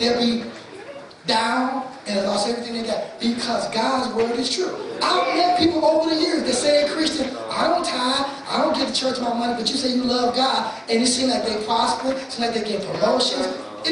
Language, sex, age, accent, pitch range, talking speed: English, male, 20-39, American, 230-285 Hz, 220 wpm